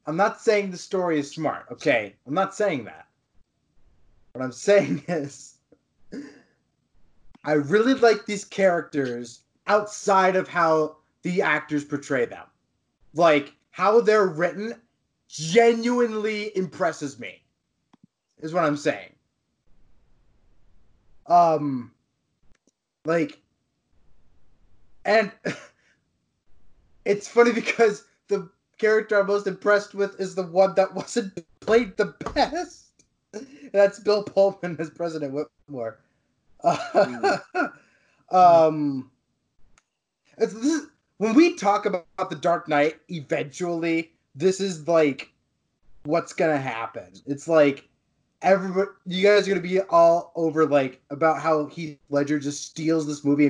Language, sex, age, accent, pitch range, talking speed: English, male, 20-39, American, 145-200 Hz, 115 wpm